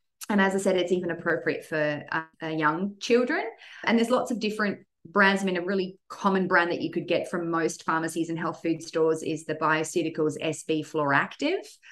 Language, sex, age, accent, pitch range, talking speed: English, female, 30-49, Australian, 160-215 Hz, 200 wpm